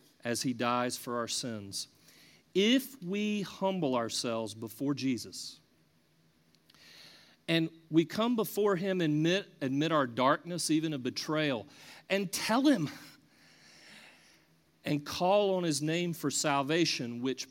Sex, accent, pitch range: male, American, 115-160 Hz